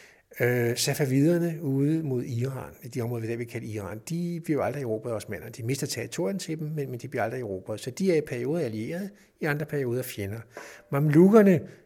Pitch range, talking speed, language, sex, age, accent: 115-150 Hz, 195 wpm, Danish, male, 60-79, native